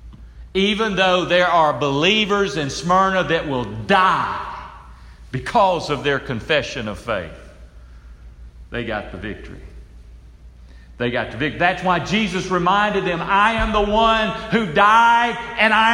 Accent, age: American, 50-69